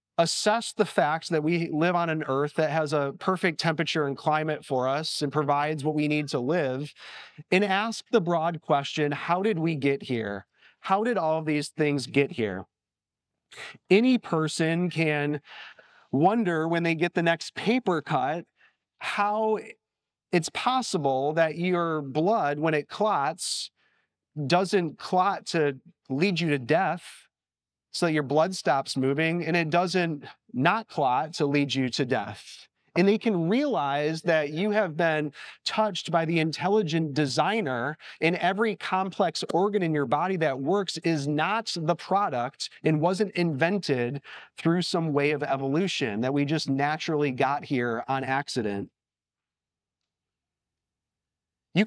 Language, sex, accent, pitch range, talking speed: English, male, American, 145-175 Hz, 150 wpm